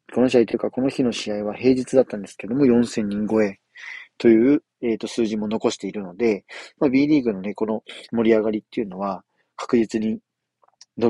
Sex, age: male, 40-59